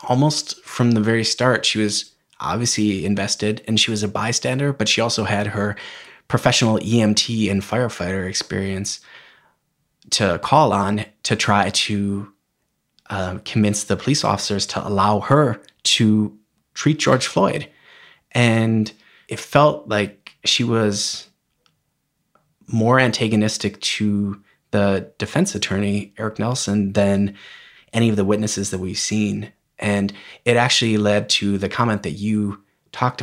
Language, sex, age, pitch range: English, male, 20-39, 100-115 Hz